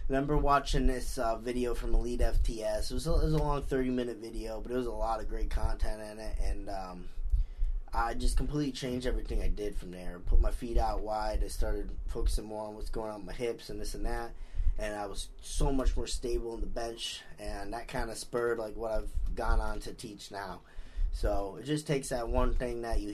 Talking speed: 235 wpm